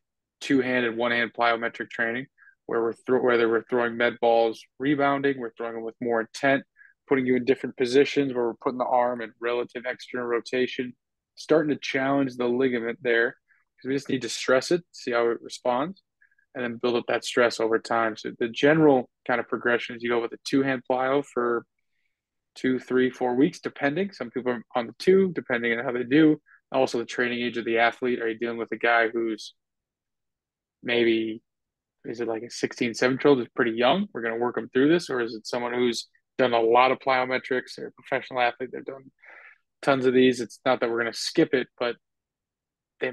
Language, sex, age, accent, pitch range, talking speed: English, male, 20-39, American, 115-130 Hz, 205 wpm